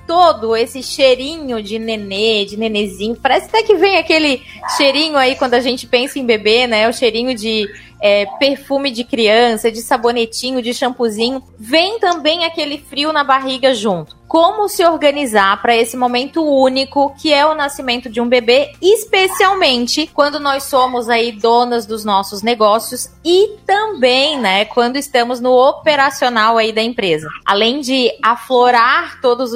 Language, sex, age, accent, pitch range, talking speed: Portuguese, female, 20-39, Brazilian, 225-280 Hz, 155 wpm